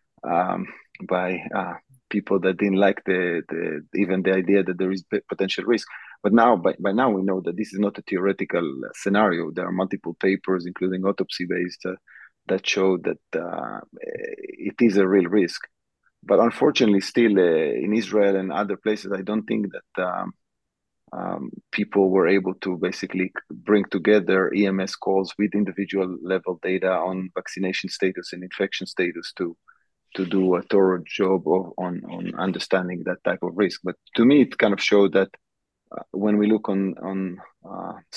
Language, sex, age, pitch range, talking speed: English, male, 30-49, 95-105 Hz, 170 wpm